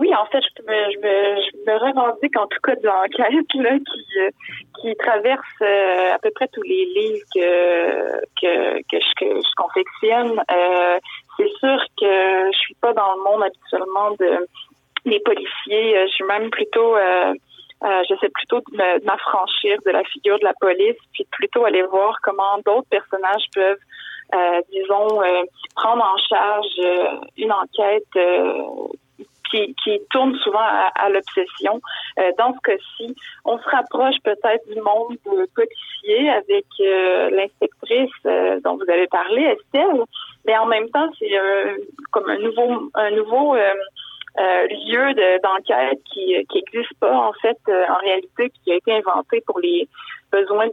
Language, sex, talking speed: French, female, 165 wpm